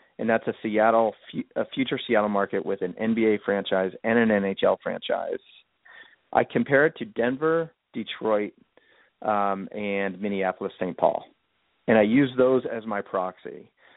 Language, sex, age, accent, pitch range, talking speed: English, male, 30-49, American, 105-125 Hz, 140 wpm